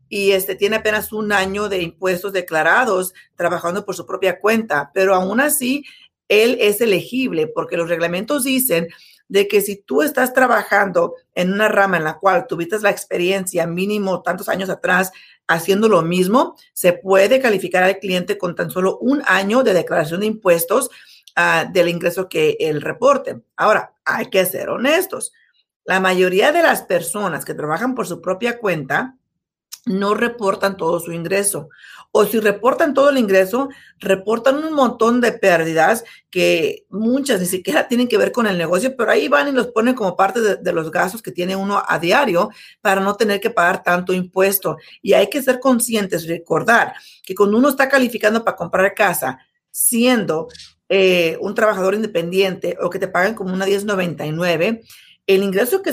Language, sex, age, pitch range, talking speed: Spanish, female, 50-69, 185-245 Hz, 175 wpm